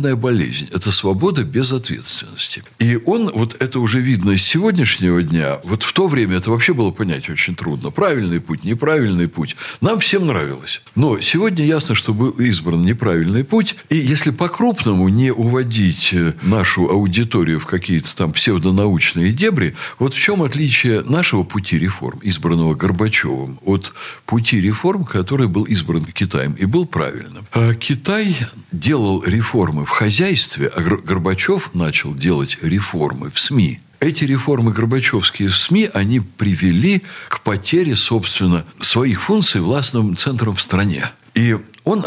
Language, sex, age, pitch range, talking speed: Russian, male, 60-79, 95-140 Hz, 145 wpm